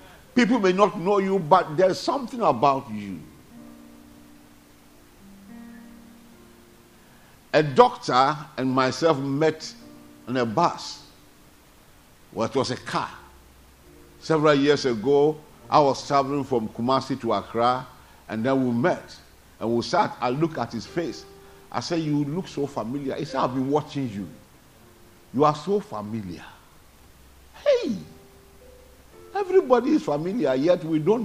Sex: male